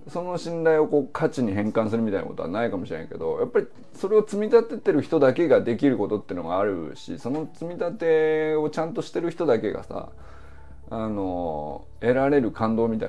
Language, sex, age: Japanese, male, 20-39